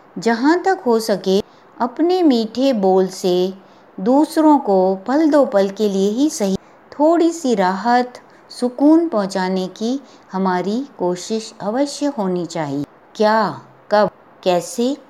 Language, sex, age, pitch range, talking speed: English, female, 60-79, 190-270 Hz, 125 wpm